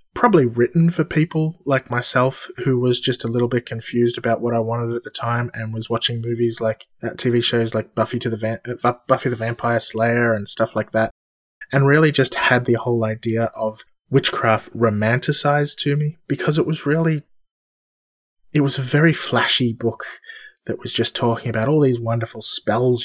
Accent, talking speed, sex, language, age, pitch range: Australian, 185 wpm, male, English, 20-39, 110-135 Hz